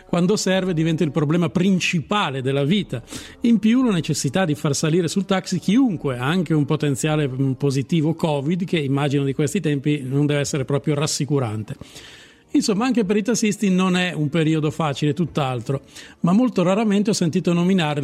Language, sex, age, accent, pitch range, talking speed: Italian, male, 50-69, native, 150-190 Hz, 170 wpm